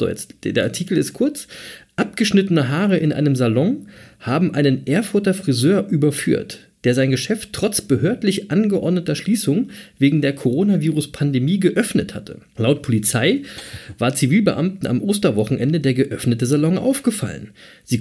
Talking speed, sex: 130 wpm, male